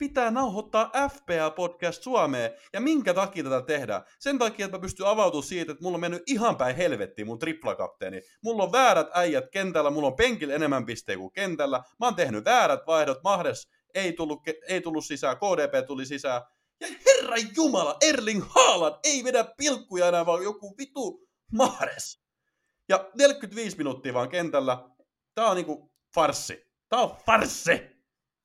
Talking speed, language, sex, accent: 160 wpm, Finnish, male, native